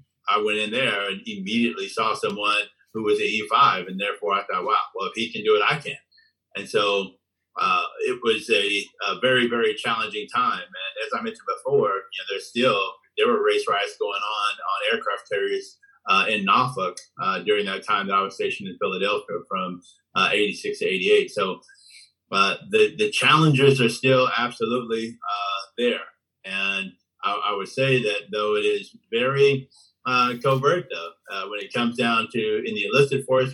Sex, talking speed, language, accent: male, 190 wpm, English, American